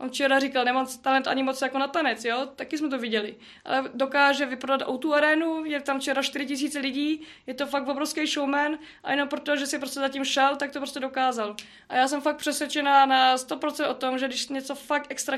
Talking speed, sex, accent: 220 wpm, female, native